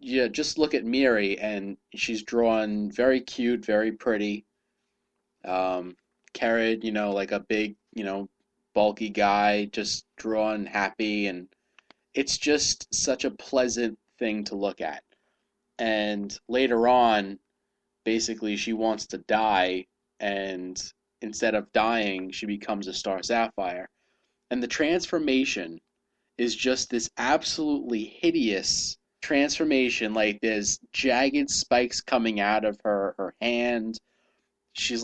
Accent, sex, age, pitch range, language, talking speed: American, male, 20-39, 105-125 Hz, English, 125 wpm